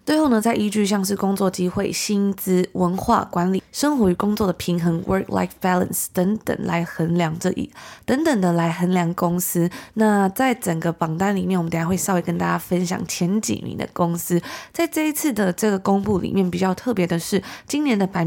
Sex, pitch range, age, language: female, 180-215 Hz, 20-39, Chinese